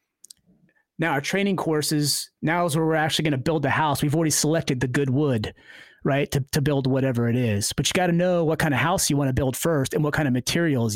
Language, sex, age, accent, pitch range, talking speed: English, male, 30-49, American, 135-165 Hz, 250 wpm